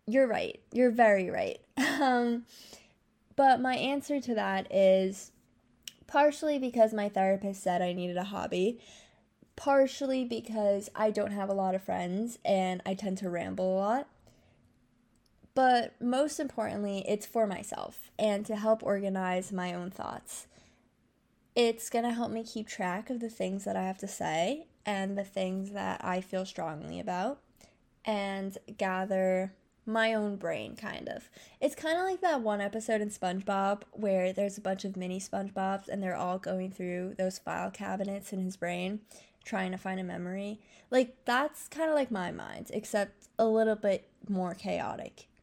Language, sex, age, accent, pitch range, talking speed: English, female, 10-29, American, 190-235 Hz, 165 wpm